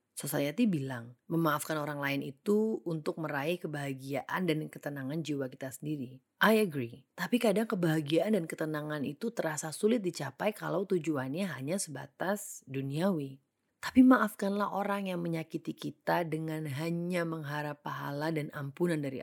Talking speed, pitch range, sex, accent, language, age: 135 wpm, 140-175 Hz, female, native, Indonesian, 30-49